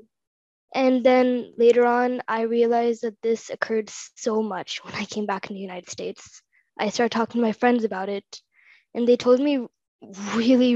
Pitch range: 215-260 Hz